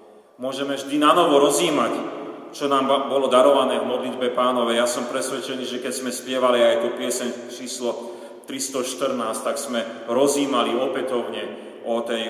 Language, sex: Slovak, male